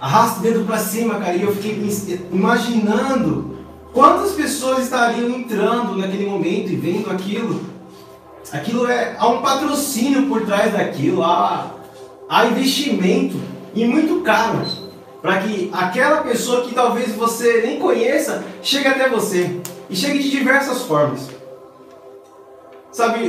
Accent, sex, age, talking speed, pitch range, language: Brazilian, male, 20-39, 130 wpm, 180-245 Hz, Portuguese